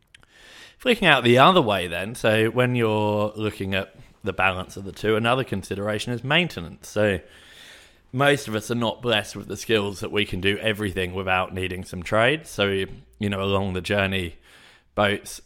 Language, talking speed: English, 180 wpm